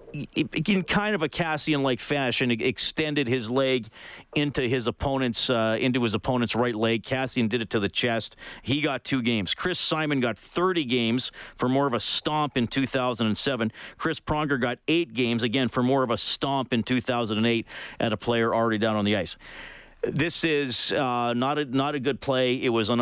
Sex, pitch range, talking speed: male, 110-140 Hz, 195 wpm